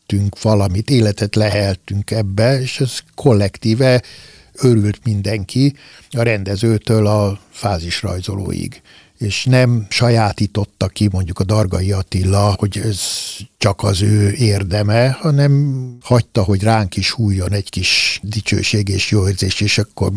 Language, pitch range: Hungarian, 100-120 Hz